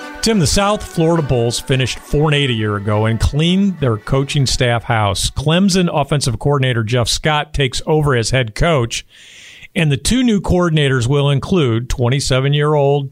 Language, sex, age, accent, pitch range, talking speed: English, male, 50-69, American, 125-160 Hz, 155 wpm